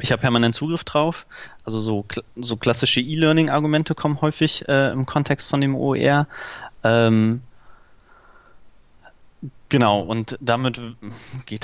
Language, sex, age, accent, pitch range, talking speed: German, male, 20-39, German, 110-135 Hz, 120 wpm